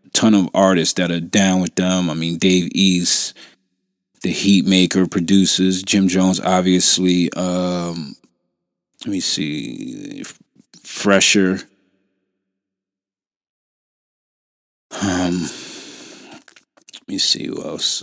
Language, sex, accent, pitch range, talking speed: English, male, American, 90-100 Hz, 95 wpm